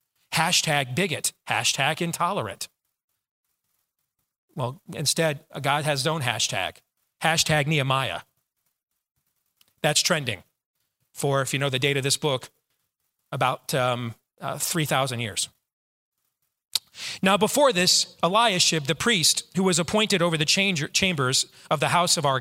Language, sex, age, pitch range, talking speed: English, male, 40-59, 145-190 Hz, 125 wpm